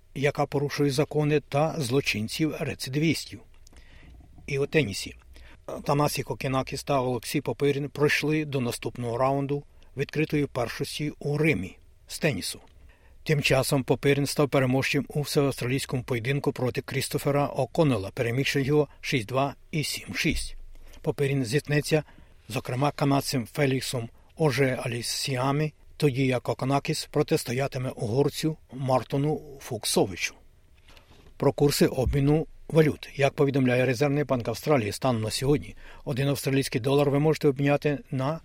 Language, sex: Ukrainian, male